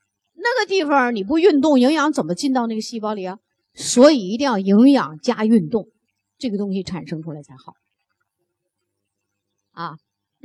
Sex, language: female, Chinese